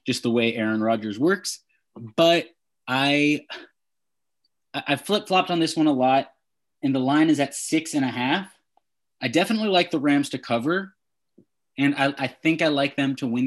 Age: 20-39